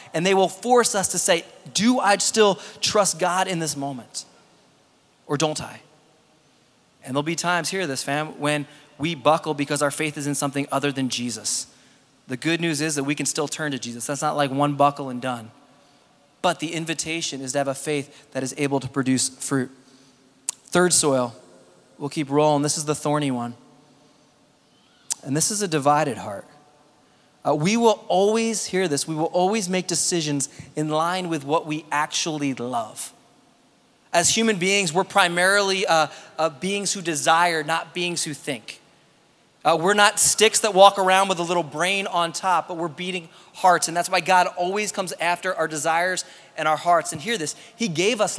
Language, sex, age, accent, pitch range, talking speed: English, male, 20-39, American, 145-185 Hz, 190 wpm